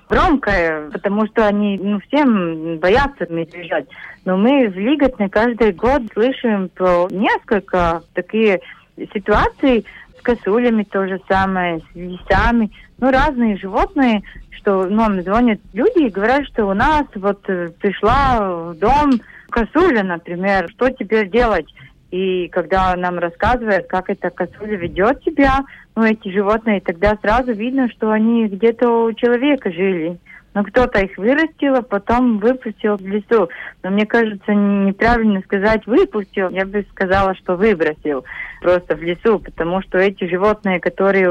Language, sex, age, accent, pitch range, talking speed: Russian, female, 30-49, native, 180-235 Hz, 140 wpm